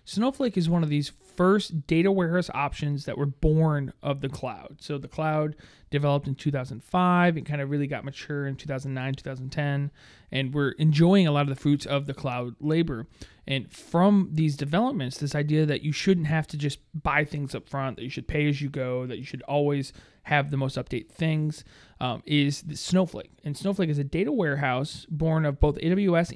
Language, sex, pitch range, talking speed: English, male, 140-165 Hz, 200 wpm